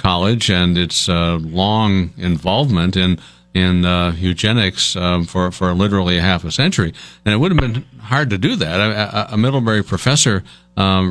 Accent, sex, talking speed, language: American, male, 175 wpm, English